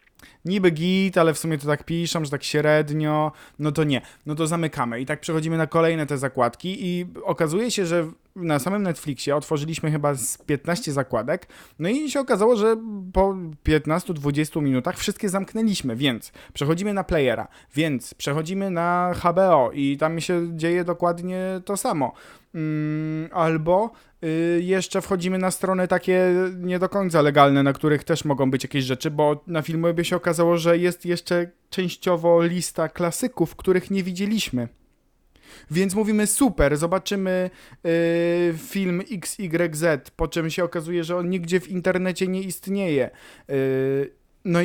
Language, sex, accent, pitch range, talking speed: Polish, male, native, 155-185 Hz, 150 wpm